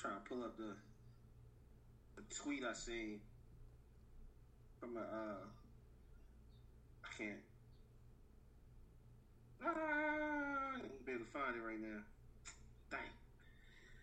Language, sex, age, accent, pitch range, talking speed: English, male, 30-49, American, 115-150 Hz, 95 wpm